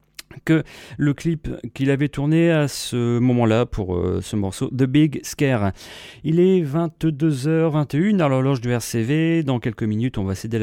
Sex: male